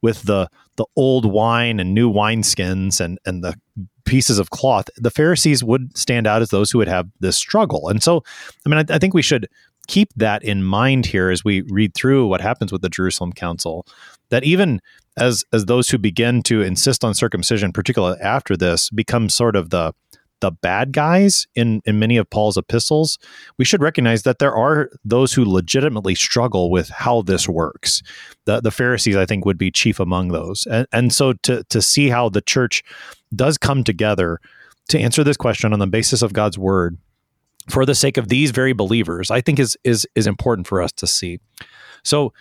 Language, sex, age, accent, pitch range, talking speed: English, male, 30-49, American, 95-130 Hz, 200 wpm